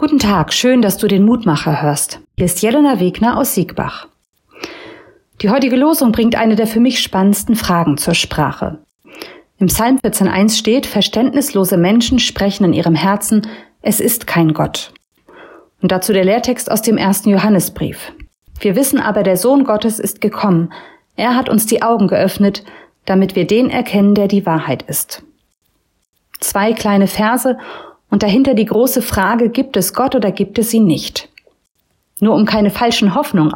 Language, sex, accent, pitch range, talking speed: German, female, German, 195-235 Hz, 165 wpm